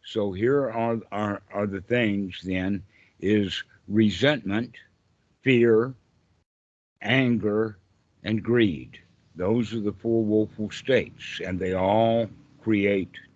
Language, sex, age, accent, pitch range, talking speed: English, male, 60-79, American, 95-120 Hz, 110 wpm